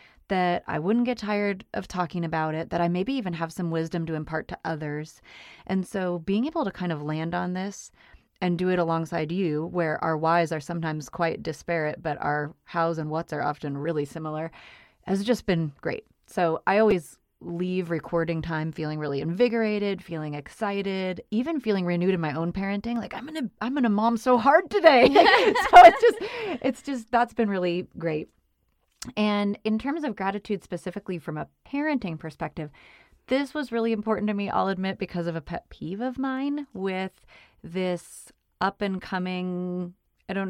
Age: 30-49